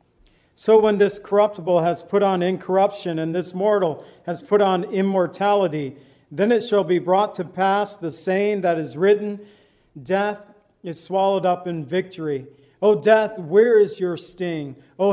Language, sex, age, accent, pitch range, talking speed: English, male, 50-69, American, 175-210 Hz, 160 wpm